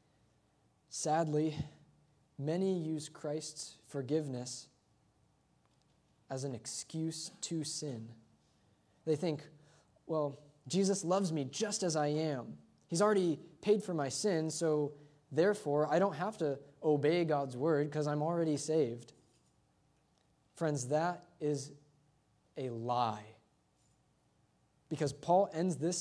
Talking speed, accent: 110 wpm, American